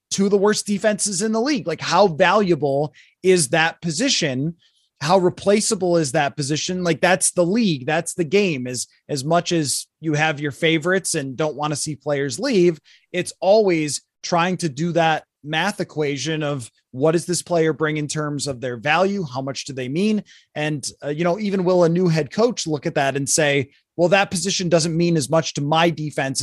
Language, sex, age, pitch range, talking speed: English, male, 20-39, 145-180 Hz, 200 wpm